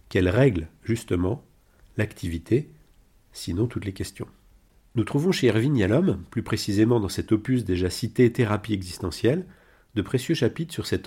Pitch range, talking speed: 95-120 Hz, 145 wpm